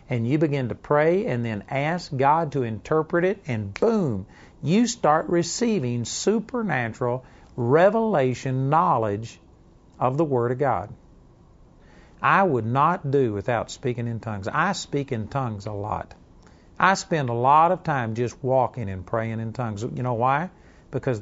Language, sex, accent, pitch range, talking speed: English, male, American, 120-160 Hz, 155 wpm